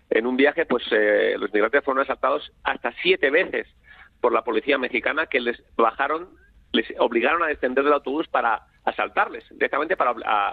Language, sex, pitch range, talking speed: Spanish, male, 125-180 Hz, 165 wpm